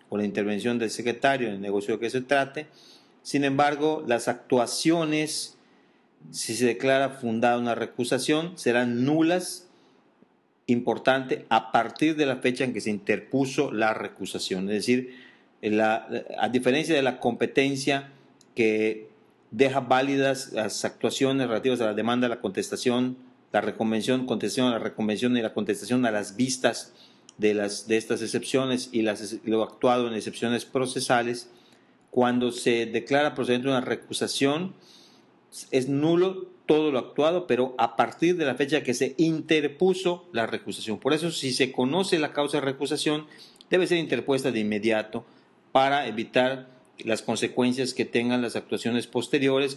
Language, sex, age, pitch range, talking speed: English, male, 40-59, 115-140 Hz, 150 wpm